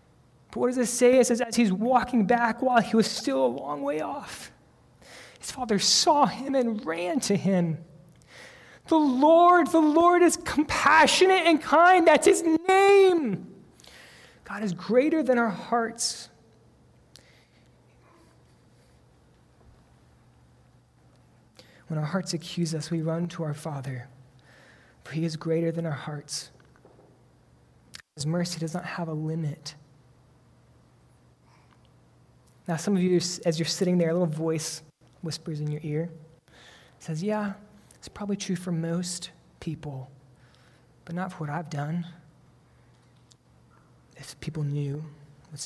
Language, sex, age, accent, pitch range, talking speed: English, male, 20-39, American, 145-205 Hz, 135 wpm